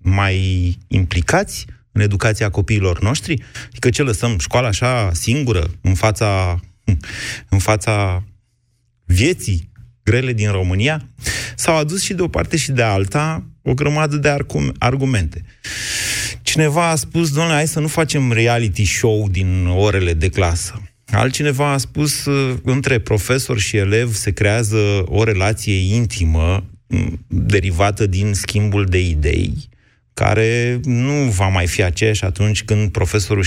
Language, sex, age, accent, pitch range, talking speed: Romanian, male, 30-49, native, 95-120 Hz, 135 wpm